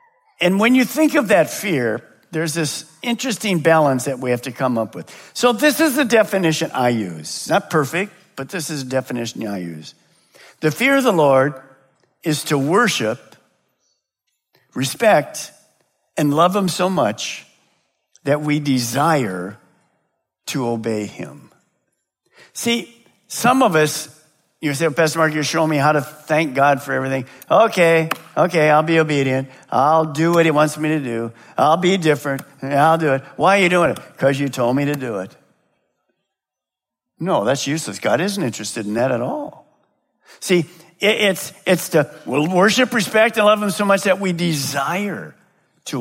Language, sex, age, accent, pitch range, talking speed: English, male, 50-69, American, 135-190 Hz, 165 wpm